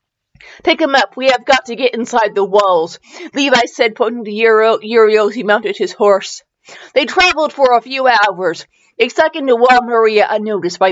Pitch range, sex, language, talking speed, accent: 220-320 Hz, female, English, 180 wpm, American